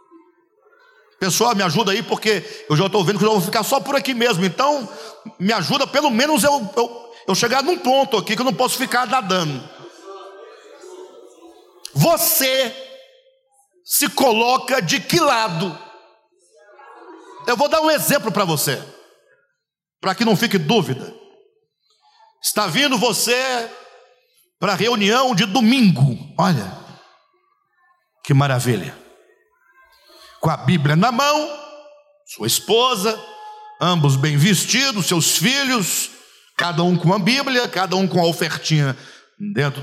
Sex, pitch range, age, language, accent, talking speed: male, 180-295 Hz, 50-69, Portuguese, Brazilian, 130 wpm